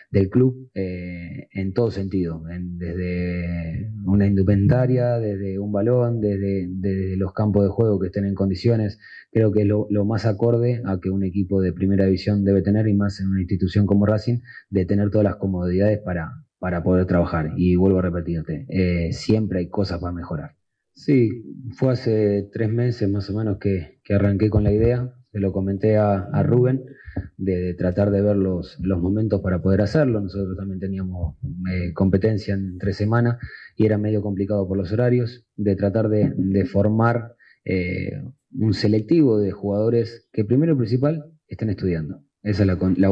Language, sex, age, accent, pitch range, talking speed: Spanish, male, 30-49, Argentinian, 95-110 Hz, 180 wpm